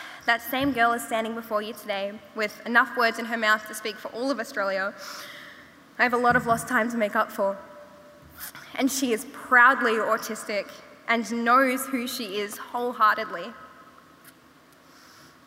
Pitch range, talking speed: 220-250 Hz, 165 wpm